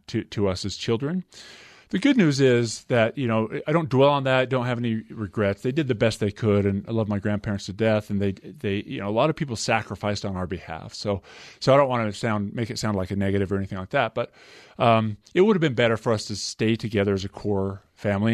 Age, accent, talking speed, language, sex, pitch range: 30-49, American, 260 wpm, English, male, 100-125 Hz